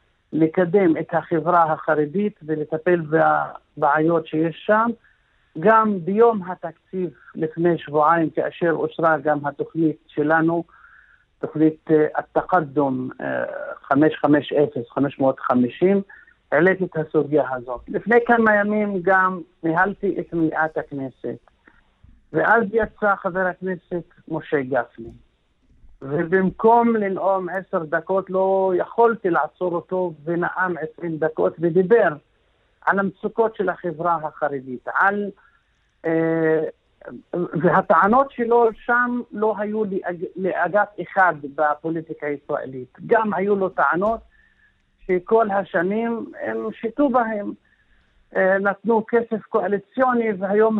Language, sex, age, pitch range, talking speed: Hebrew, male, 50-69, 160-210 Hz, 95 wpm